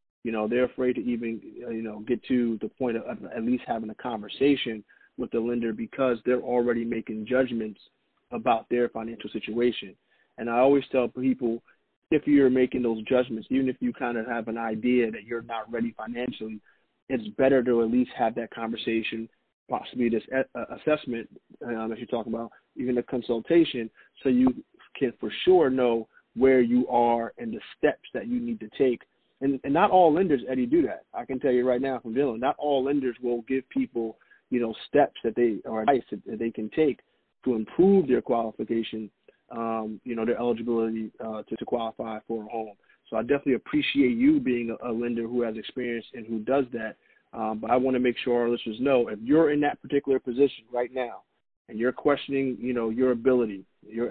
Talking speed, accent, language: 200 wpm, American, English